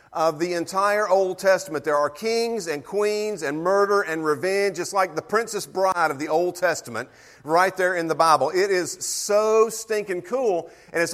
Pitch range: 165-210 Hz